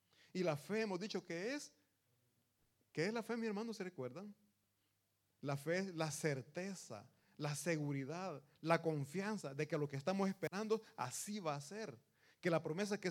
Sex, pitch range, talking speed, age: male, 130-195 Hz, 175 wpm, 30-49